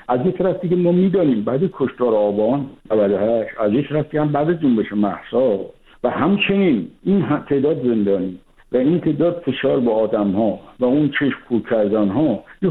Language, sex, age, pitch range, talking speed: Persian, male, 60-79, 120-165 Hz, 185 wpm